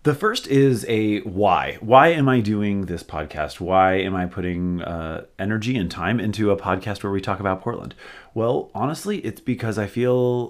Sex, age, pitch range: male, 30-49, 85-110 Hz